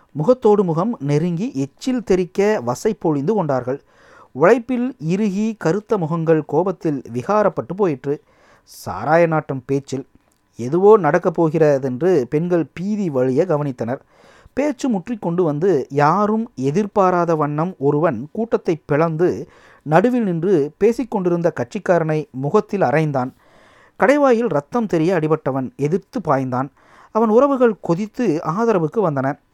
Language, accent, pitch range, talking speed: Tamil, native, 150-215 Hz, 105 wpm